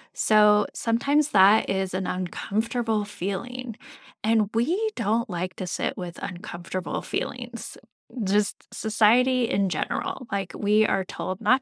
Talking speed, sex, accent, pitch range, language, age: 130 wpm, female, American, 195-245 Hz, English, 10-29